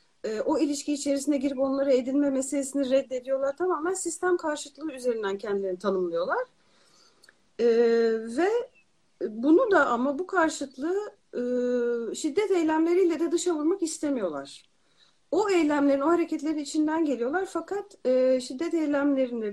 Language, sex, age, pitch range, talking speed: Turkish, female, 40-59, 250-330 Hz, 115 wpm